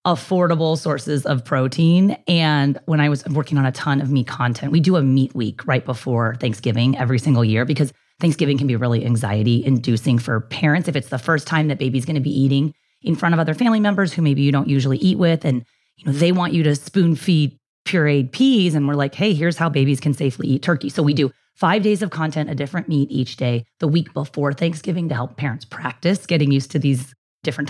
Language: English